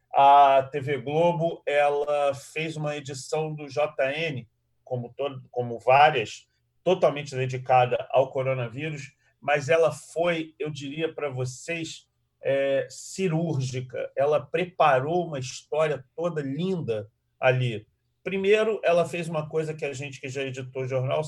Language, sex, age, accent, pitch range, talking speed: Portuguese, male, 40-59, Brazilian, 130-160 Hz, 130 wpm